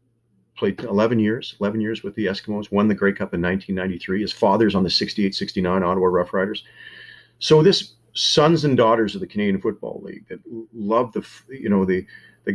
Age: 40-59